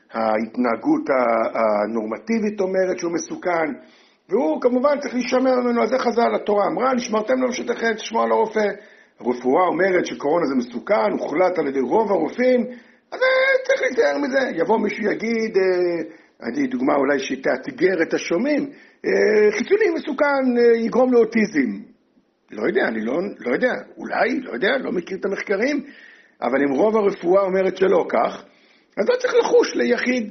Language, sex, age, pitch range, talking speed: Hebrew, male, 60-79, 185-275 Hz, 145 wpm